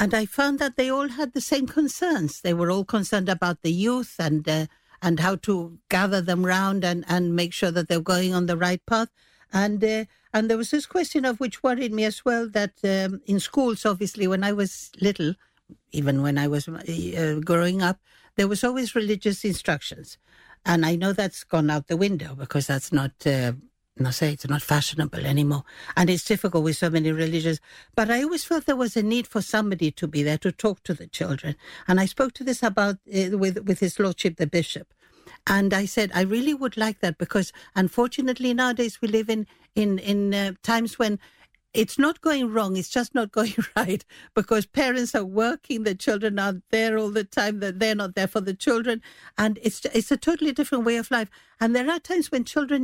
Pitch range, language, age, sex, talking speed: 175-235 Hz, English, 60-79, female, 215 wpm